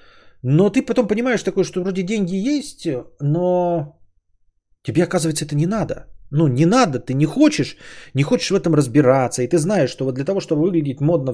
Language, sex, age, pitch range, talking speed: Bulgarian, male, 20-39, 125-165 Hz, 190 wpm